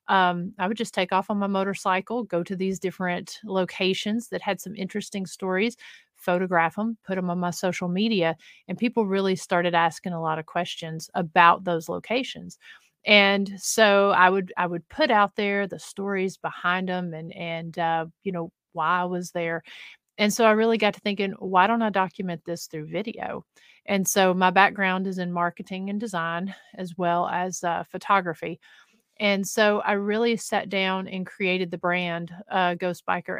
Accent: American